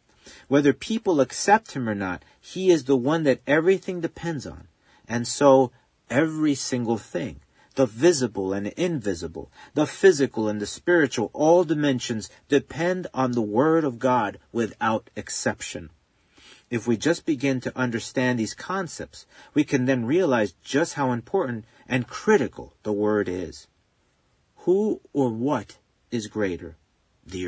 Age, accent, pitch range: 40-59, American, 115-160 Hz